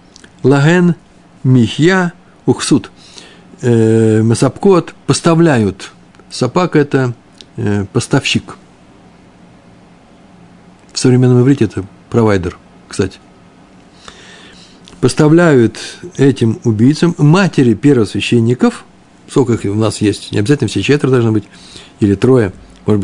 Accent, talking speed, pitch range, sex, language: native, 90 wpm, 105-150 Hz, male, Russian